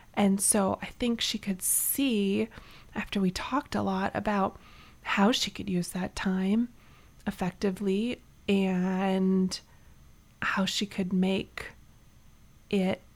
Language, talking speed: English, 120 wpm